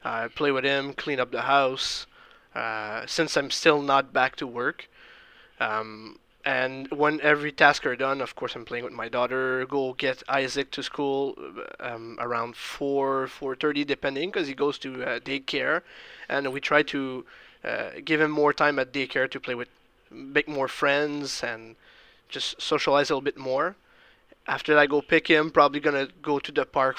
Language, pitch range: English, 130-145 Hz